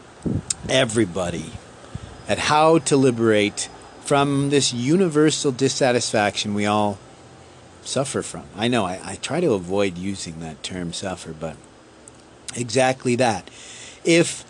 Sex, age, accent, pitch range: male, 40-59, American, 105-140 Hz